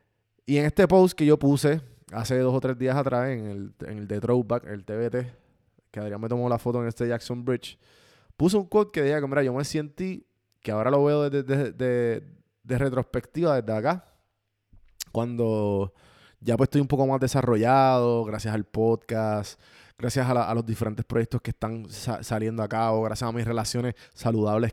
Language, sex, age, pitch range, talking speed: Spanish, male, 20-39, 105-130 Hz, 200 wpm